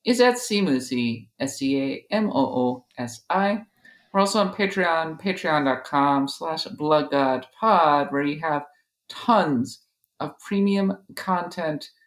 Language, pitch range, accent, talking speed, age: English, 140-200 Hz, American, 110 wpm, 50-69